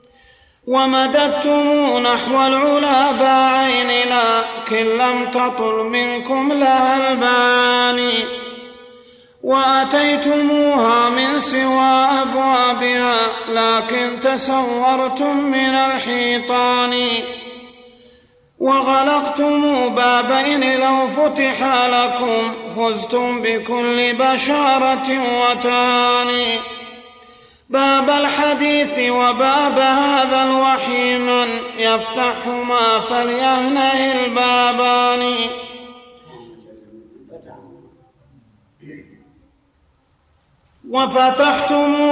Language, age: Arabic, 30-49